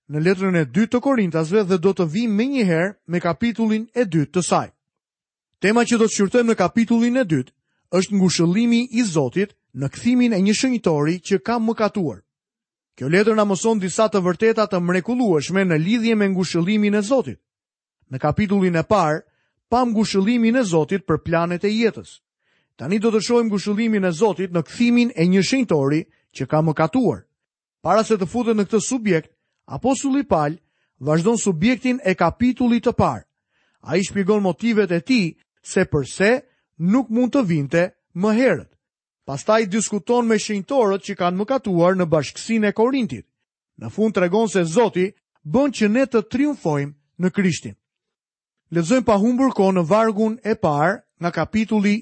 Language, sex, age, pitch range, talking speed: Croatian, male, 30-49, 170-225 Hz, 150 wpm